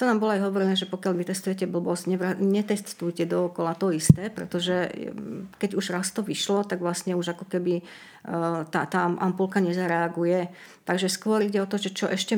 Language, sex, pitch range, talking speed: Slovak, female, 175-195 Hz, 180 wpm